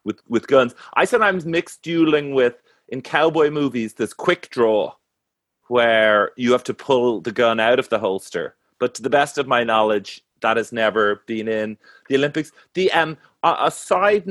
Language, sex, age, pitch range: English, male, 30-49, 110-150 Hz